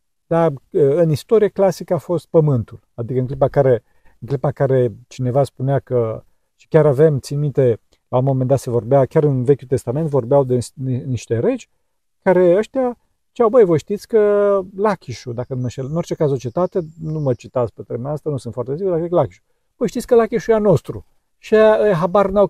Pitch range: 130-185 Hz